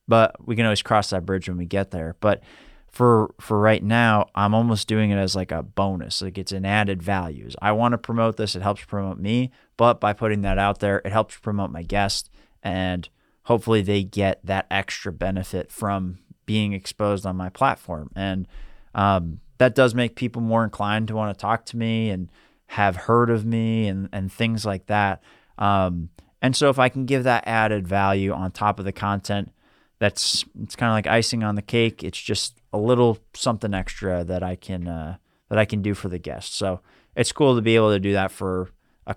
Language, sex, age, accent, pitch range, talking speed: English, male, 30-49, American, 95-115 Hz, 210 wpm